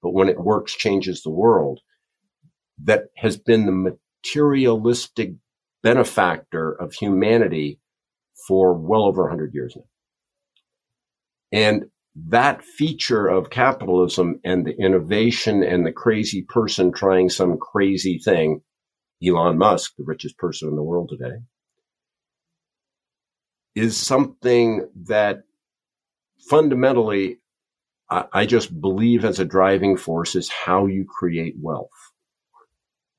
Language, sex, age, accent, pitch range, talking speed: German, male, 50-69, American, 90-120 Hz, 115 wpm